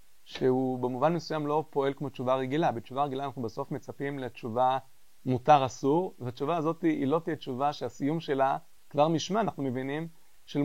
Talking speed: 165 wpm